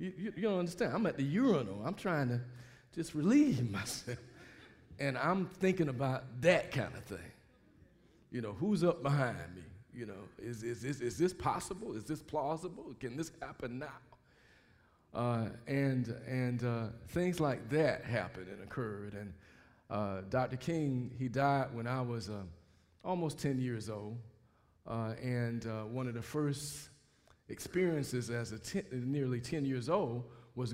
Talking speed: 160 wpm